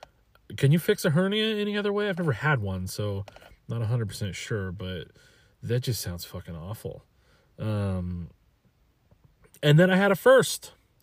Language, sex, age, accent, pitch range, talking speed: English, male, 30-49, American, 105-140 Hz, 170 wpm